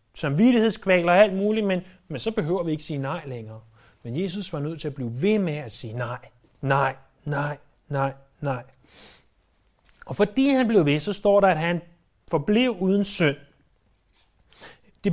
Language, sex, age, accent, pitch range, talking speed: Danish, male, 30-49, native, 135-210 Hz, 170 wpm